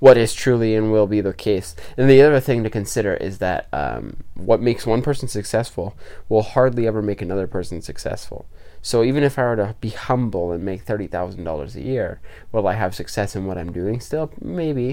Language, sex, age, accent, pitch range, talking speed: English, male, 20-39, American, 90-115 Hz, 215 wpm